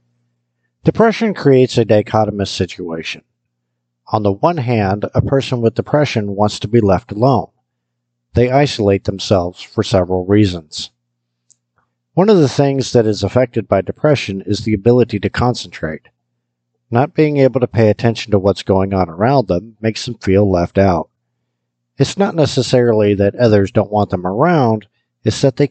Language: English